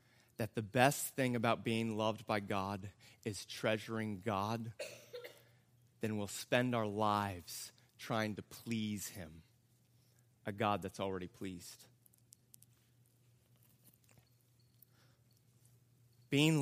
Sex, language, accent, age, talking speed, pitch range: male, English, American, 30-49, 100 wpm, 120-170 Hz